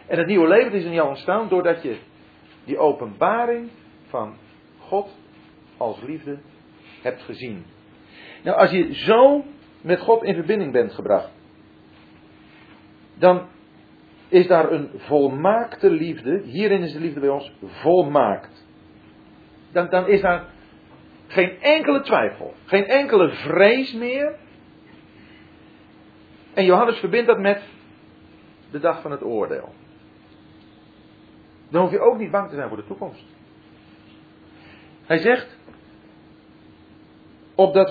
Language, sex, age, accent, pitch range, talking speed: French, male, 40-59, Dutch, 130-195 Hz, 120 wpm